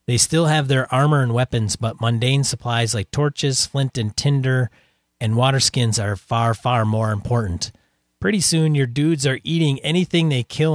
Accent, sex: American, male